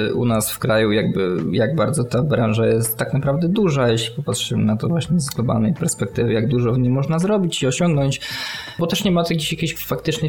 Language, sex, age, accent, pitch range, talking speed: Polish, male, 20-39, native, 110-130 Hz, 210 wpm